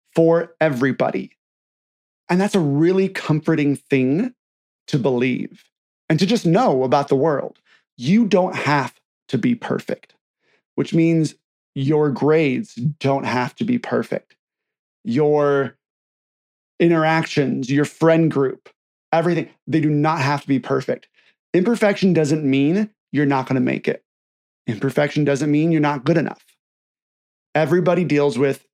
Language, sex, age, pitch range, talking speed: English, male, 30-49, 135-180 Hz, 135 wpm